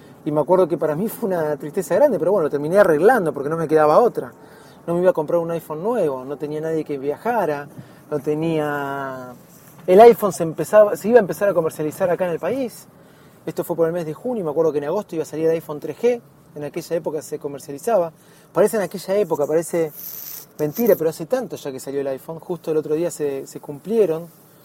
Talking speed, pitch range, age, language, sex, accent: 230 wpm, 150-190 Hz, 30-49, Spanish, male, Argentinian